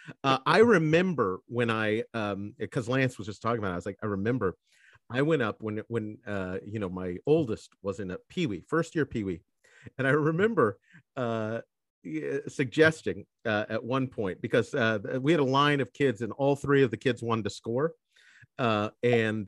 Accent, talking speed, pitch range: American, 195 wpm, 105-140 Hz